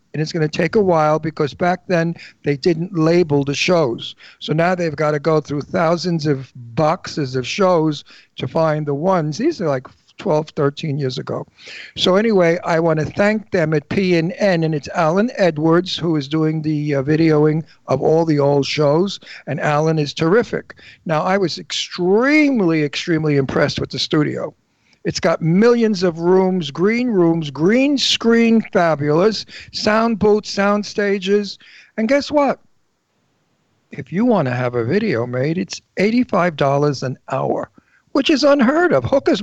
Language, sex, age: English, male, 50-69